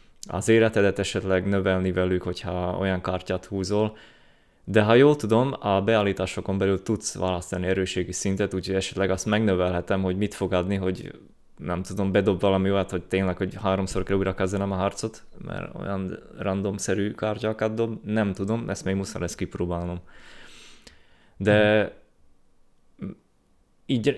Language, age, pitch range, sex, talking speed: Hungarian, 20-39, 95-110 Hz, male, 140 wpm